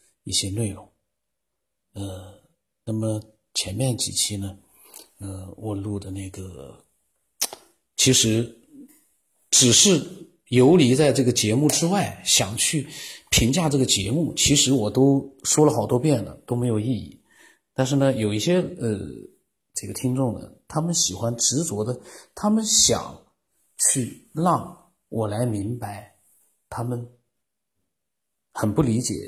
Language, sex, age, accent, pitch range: Chinese, male, 50-69, native, 105-130 Hz